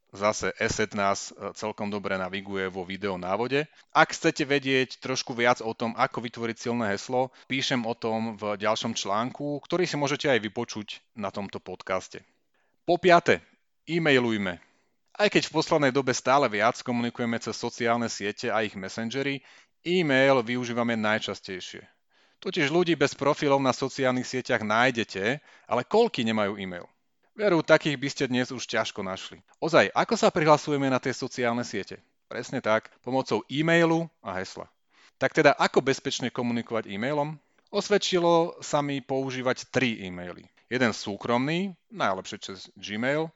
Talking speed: 145 wpm